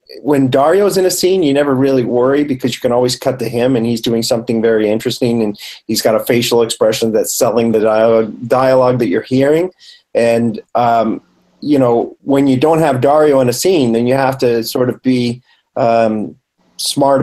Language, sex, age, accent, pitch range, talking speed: English, male, 40-59, American, 115-140 Hz, 195 wpm